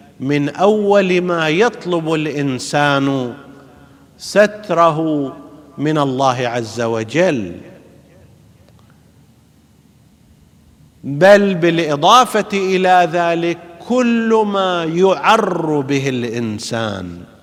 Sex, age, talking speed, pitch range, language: male, 50-69, 65 wpm, 135-195 Hz, Arabic